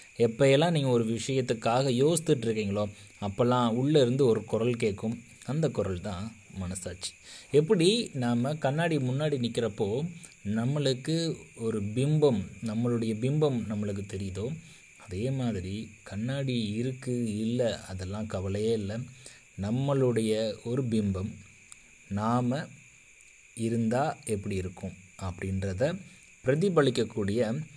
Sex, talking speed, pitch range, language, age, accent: male, 95 wpm, 100-130 Hz, Tamil, 30-49, native